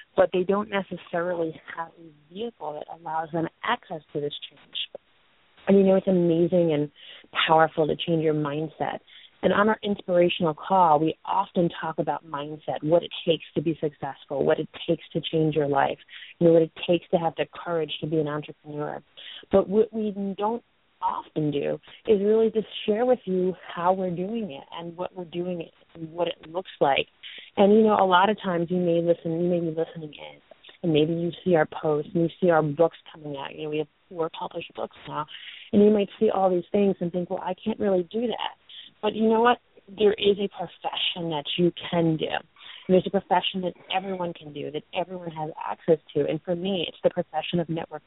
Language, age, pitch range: English, 30-49, 160-190 Hz